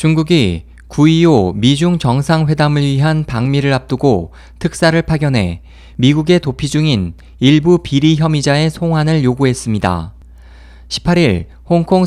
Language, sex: Korean, male